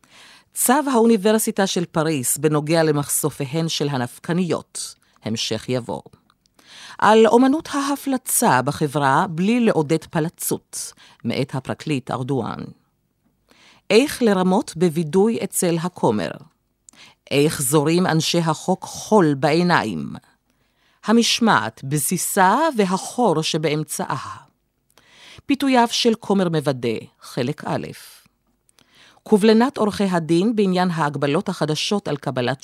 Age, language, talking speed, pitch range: 50-69, Hebrew, 90 wpm, 145-205 Hz